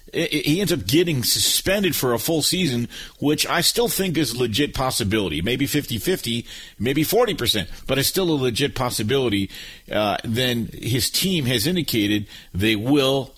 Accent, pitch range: American, 120-175 Hz